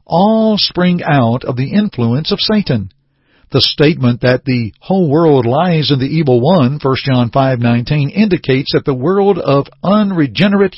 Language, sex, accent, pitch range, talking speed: English, male, American, 125-170 Hz, 155 wpm